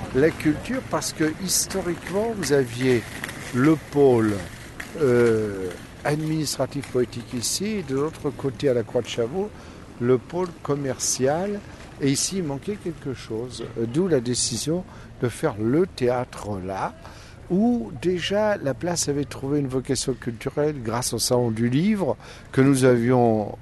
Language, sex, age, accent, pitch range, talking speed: French, male, 60-79, French, 110-140 Hz, 140 wpm